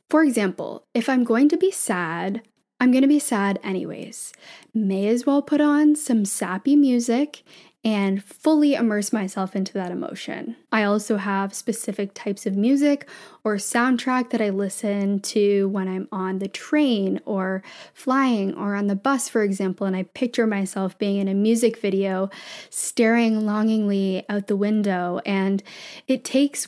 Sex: female